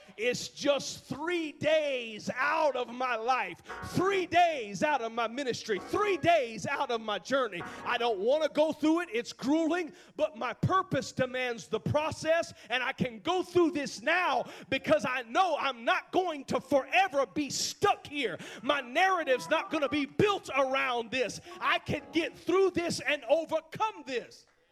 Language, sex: English, male